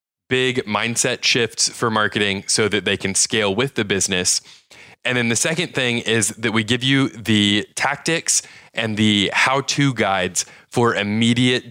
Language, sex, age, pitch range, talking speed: English, male, 20-39, 100-125 Hz, 165 wpm